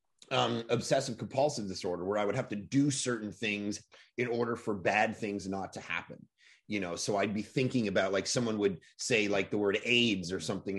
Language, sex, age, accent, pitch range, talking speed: English, male, 30-49, American, 110-145 Hz, 205 wpm